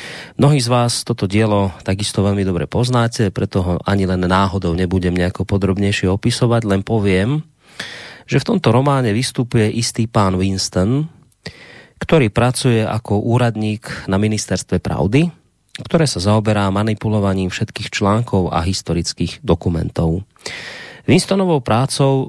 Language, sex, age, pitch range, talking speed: Slovak, male, 30-49, 95-120 Hz, 125 wpm